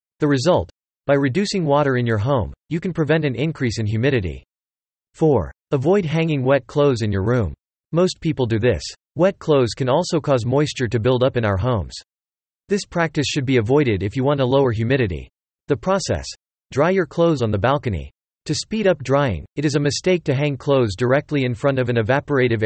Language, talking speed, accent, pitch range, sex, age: English, 200 wpm, American, 110-150 Hz, male, 40-59